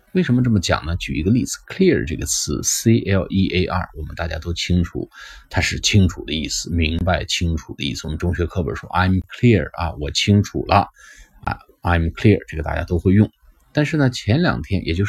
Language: Chinese